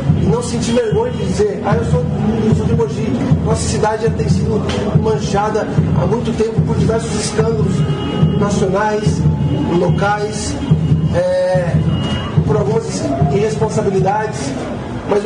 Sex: male